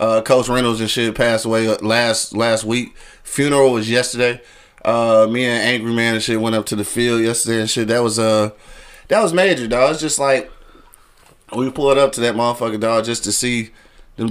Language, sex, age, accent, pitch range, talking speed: English, male, 20-39, American, 105-125 Hz, 205 wpm